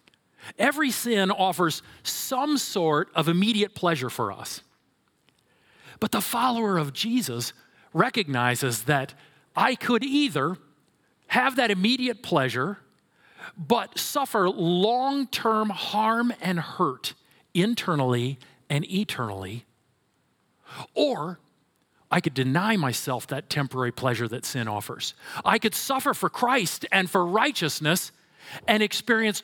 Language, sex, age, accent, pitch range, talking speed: English, male, 40-59, American, 135-210 Hz, 110 wpm